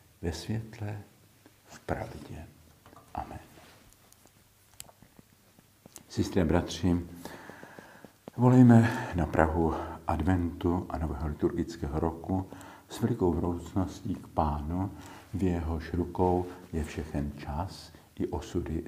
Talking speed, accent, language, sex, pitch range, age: 90 wpm, native, Czech, male, 80-100 Hz, 50-69